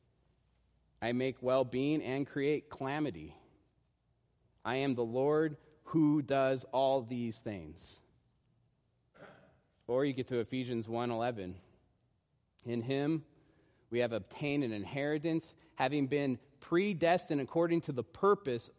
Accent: American